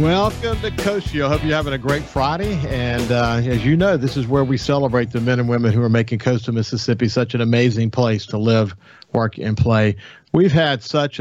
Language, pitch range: English, 105-130 Hz